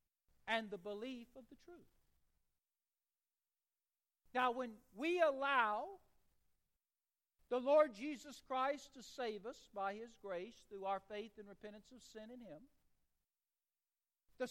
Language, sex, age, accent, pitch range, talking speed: English, male, 60-79, American, 235-300 Hz, 125 wpm